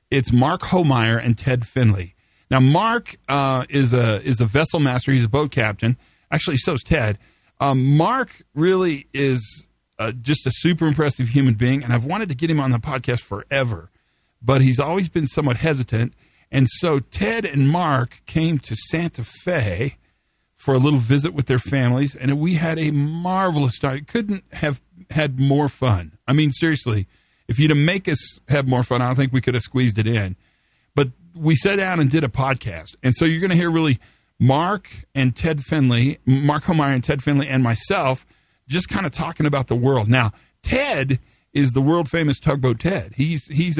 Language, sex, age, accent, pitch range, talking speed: English, male, 40-59, American, 120-155 Hz, 190 wpm